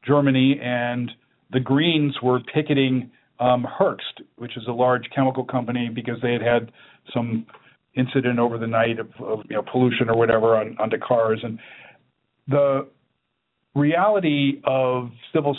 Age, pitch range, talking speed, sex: 50-69, 120-135 Hz, 150 wpm, male